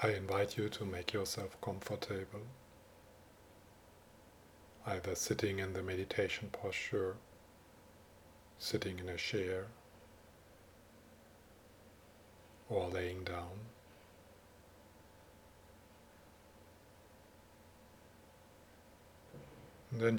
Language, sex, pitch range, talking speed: English, male, 90-110 Hz, 60 wpm